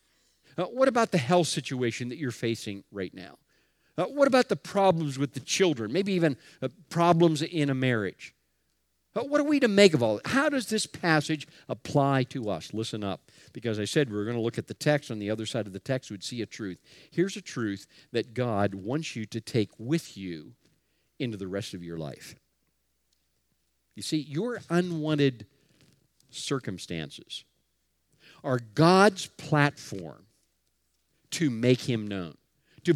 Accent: American